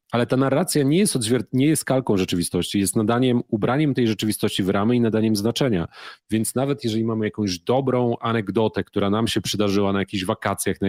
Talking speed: 195 wpm